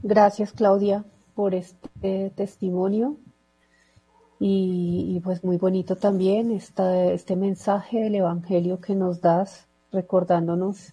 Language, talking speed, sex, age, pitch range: Spanish, 105 wpm, female, 40-59, 180-200 Hz